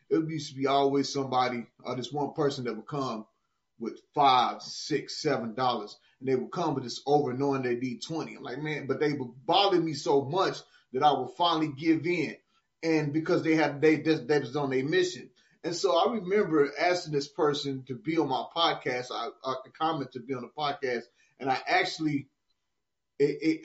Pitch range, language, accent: 130-160 Hz, English, American